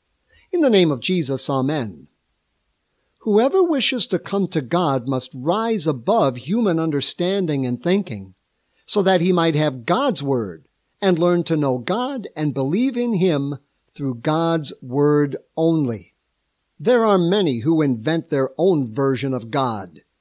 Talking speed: 145 wpm